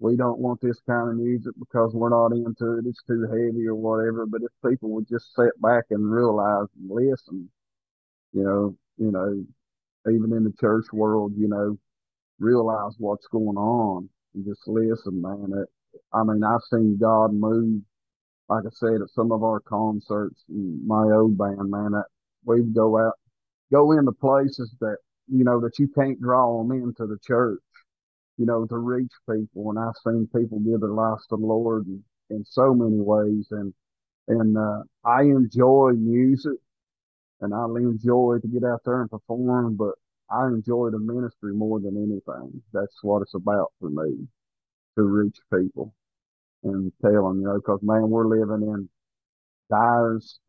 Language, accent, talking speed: English, American, 170 wpm